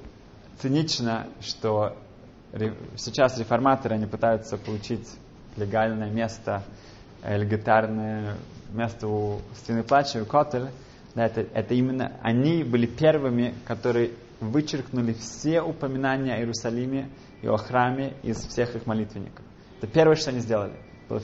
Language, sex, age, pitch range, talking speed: Russian, male, 20-39, 105-125 Hz, 115 wpm